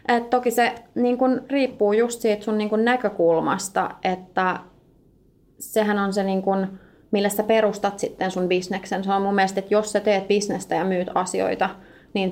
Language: Finnish